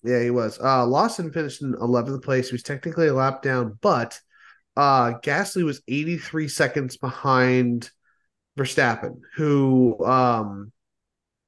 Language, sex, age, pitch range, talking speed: English, male, 30-49, 120-155 Hz, 130 wpm